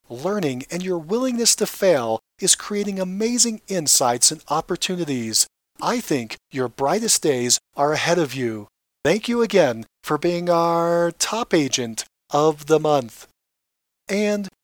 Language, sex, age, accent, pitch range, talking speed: English, male, 40-59, American, 140-200 Hz, 135 wpm